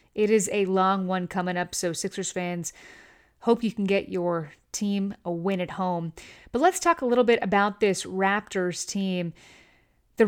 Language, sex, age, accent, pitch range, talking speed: English, female, 30-49, American, 175-210 Hz, 180 wpm